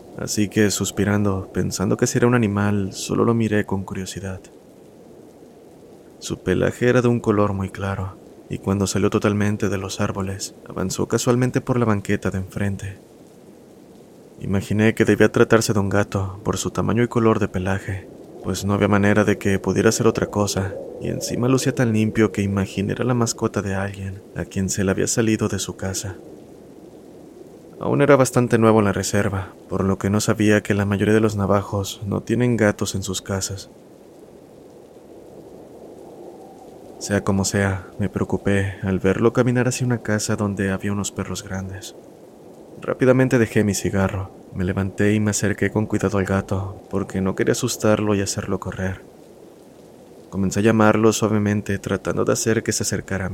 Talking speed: 170 wpm